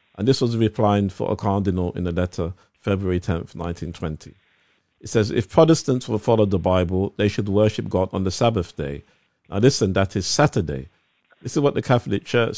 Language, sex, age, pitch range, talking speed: English, male, 50-69, 90-115 Hz, 190 wpm